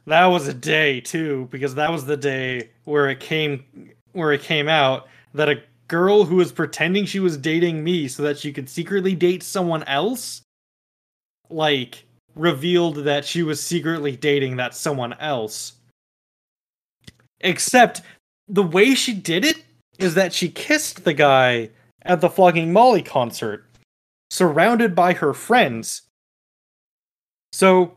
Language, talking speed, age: English, 145 wpm, 20-39